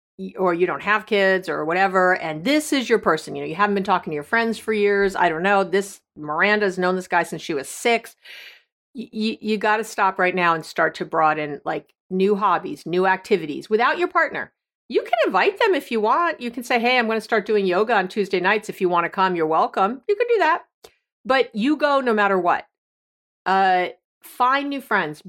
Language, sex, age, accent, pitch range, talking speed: English, female, 50-69, American, 170-235 Hz, 225 wpm